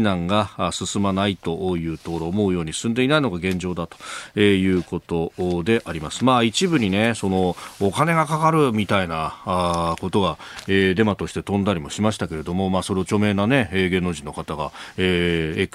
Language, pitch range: Japanese, 90-130 Hz